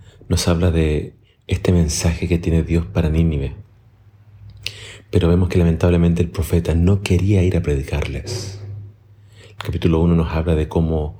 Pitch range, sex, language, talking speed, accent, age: 85-105 Hz, male, Spanish, 150 wpm, Argentinian, 30-49